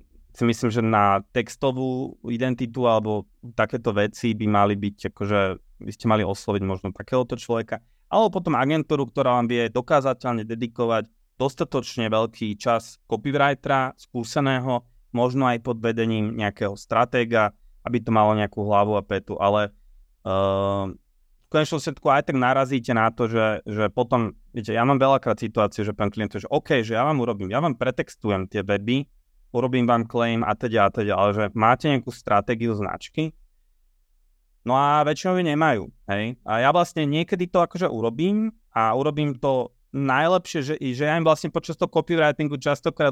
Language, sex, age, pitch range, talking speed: Slovak, male, 20-39, 110-145 Hz, 165 wpm